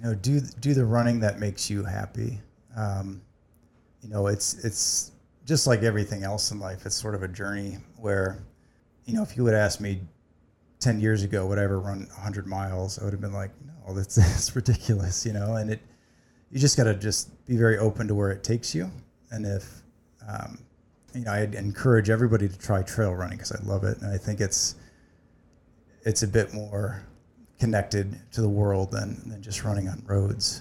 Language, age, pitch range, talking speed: English, 30-49, 100-115 Hz, 205 wpm